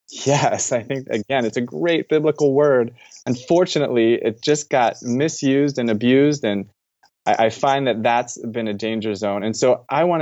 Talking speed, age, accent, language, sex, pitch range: 175 wpm, 20-39, American, English, male, 110-135 Hz